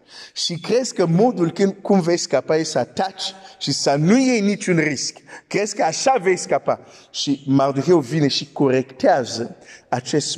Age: 50-69